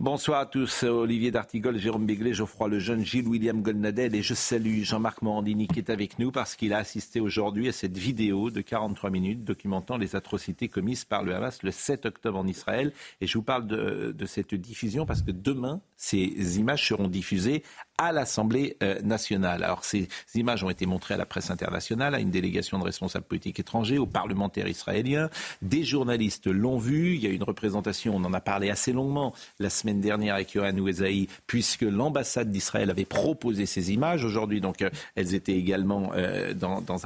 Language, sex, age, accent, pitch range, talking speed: French, male, 50-69, French, 100-125 Hz, 190 wpm